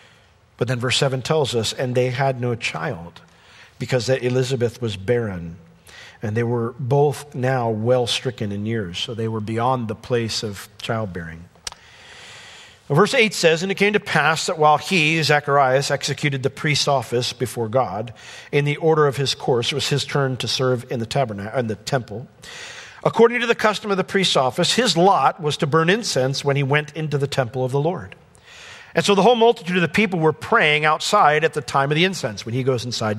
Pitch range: 125-185 Hz